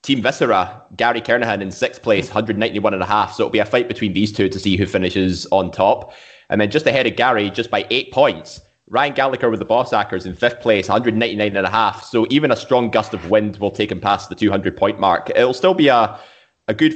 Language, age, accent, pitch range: English, 20-39, British, 100-120 Hz